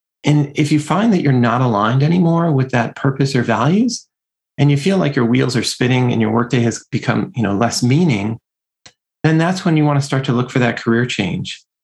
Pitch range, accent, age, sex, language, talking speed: 115-145 Hz, American, 30-49, male, English, 225 wpm